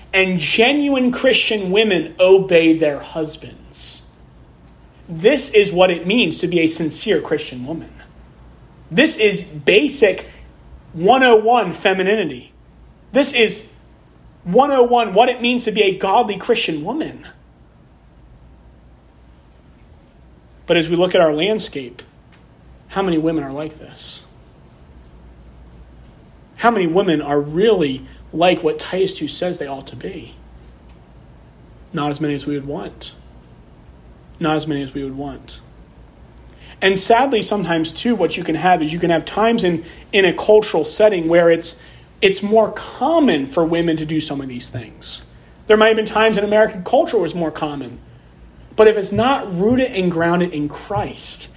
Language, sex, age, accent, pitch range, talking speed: English, male, 30-49, American, 125-215 Hz, 150 wpm